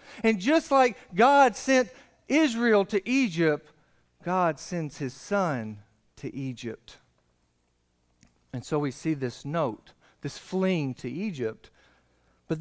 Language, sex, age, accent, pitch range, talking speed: English, male, 50-69, American, 145-220 Hz, 120 wpm